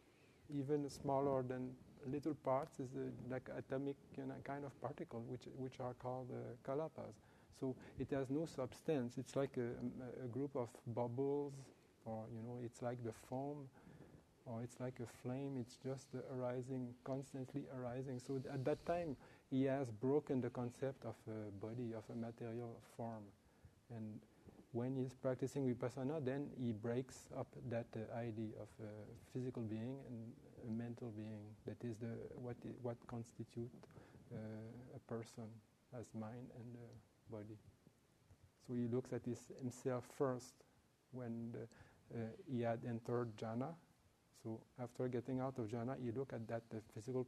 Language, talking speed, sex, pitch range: English, 165 wpm, male, 115-130 Hz